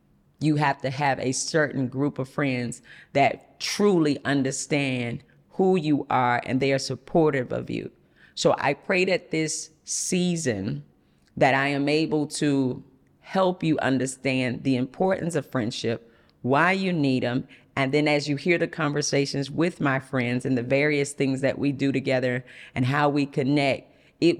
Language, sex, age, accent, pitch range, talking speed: English, female, 40-59, American, 130-160 Hz, 160 wpm